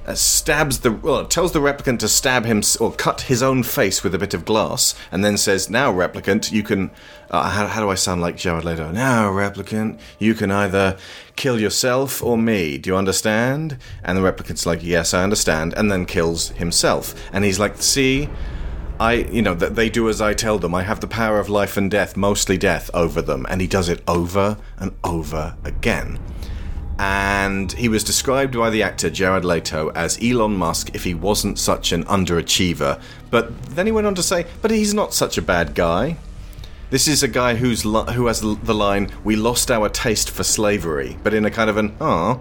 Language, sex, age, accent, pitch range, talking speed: English, male, 30-49, British, 95-125 Hz, 210 wpm